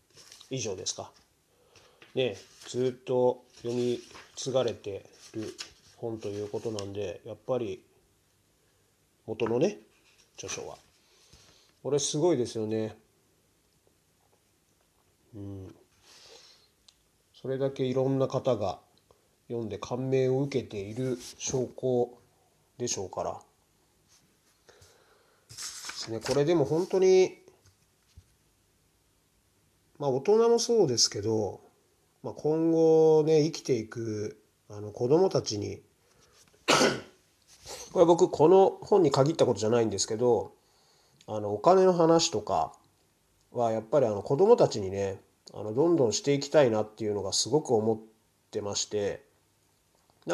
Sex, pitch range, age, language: male, 105-155 Hz, 30-49, Japanese